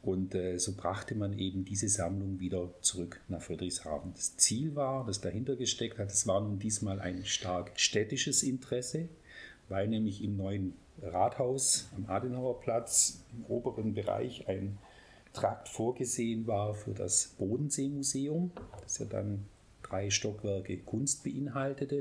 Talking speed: 135 wpm